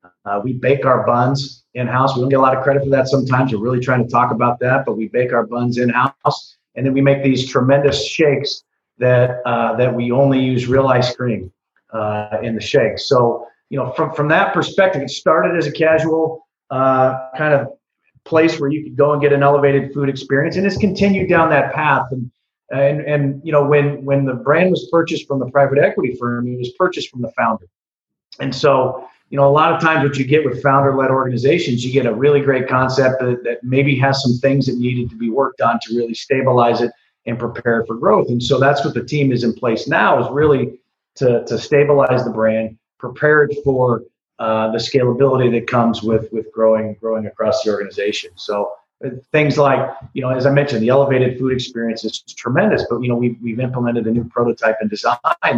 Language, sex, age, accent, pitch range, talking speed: English, male, 40-59, American, 120-140 Hz, 215 wpm